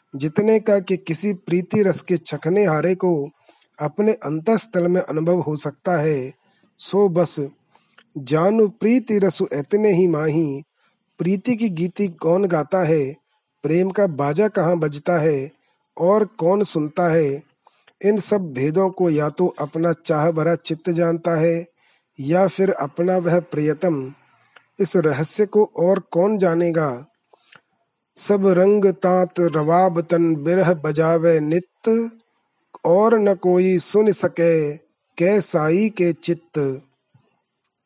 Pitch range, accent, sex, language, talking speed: 155-195 Hz, native, male, Hindi, 125 wpm